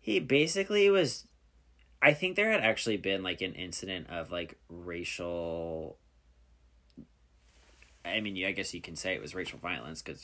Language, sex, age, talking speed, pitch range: English, male, 20-39, 160 wpm, 85-120 Hz